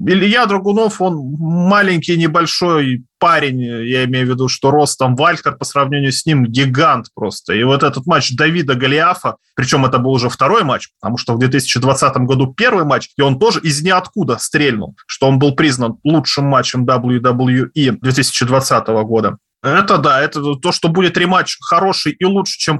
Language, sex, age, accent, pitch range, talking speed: Russian, male, 20-39, native, 130-180 Hz, 170 wpm